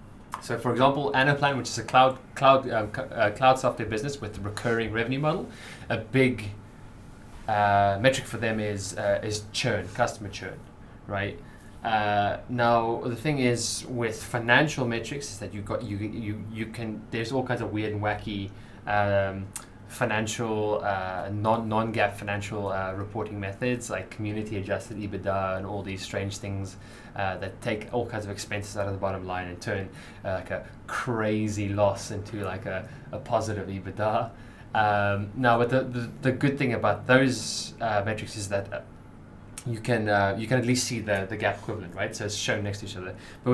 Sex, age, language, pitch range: male, 20-39, English, 100-120 Hz